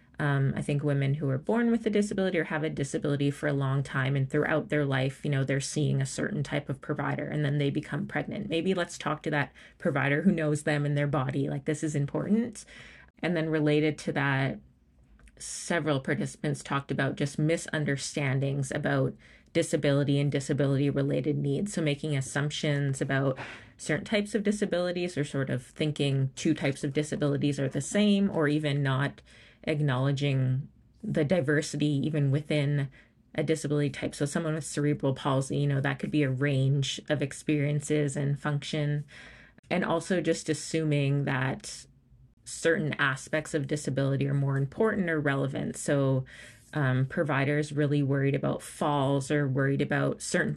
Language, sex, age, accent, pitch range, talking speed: English, female, 30-49, American, 140-155 Hz, 165 wpm